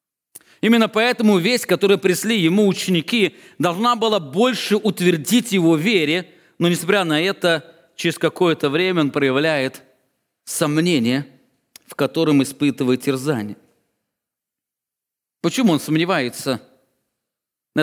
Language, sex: English, male